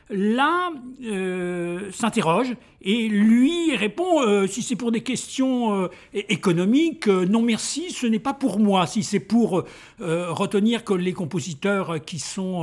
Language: French